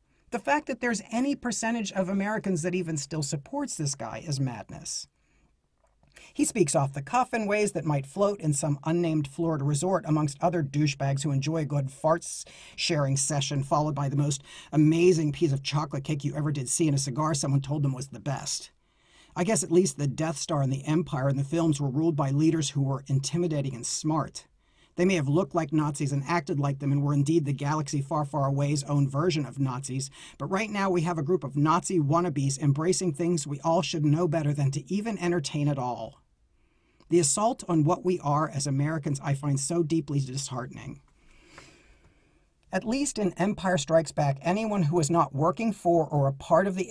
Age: 40-59